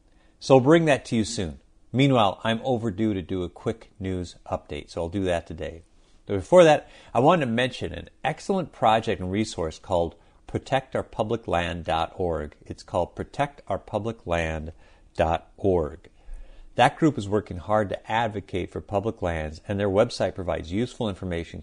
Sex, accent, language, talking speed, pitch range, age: male, American, English, 150 wpm, 85-115 Hz, 50-69